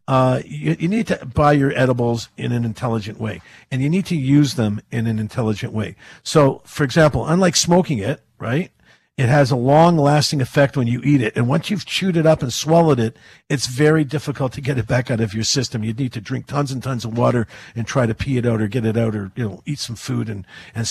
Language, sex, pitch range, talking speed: English, male, 120-155 Hz, 245 wpm